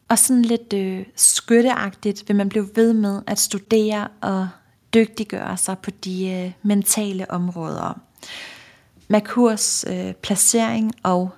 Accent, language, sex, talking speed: native, Danish, female, 125 wpm